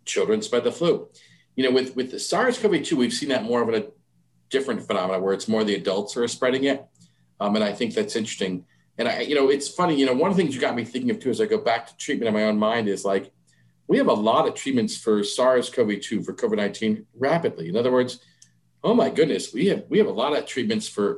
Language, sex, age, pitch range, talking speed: English, male, 40-59, 105-160 Hz, 250 wpm